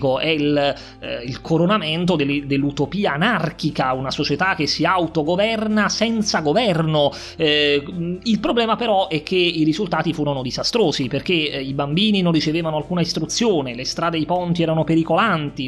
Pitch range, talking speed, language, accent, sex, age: 145-180 Hz, 140 wpm, Italian, native, male, 30-49